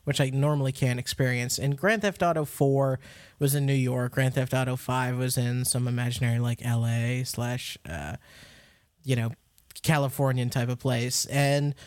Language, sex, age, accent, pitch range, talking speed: English, male, 20-39, American, 120-140 Hz, 165 wpm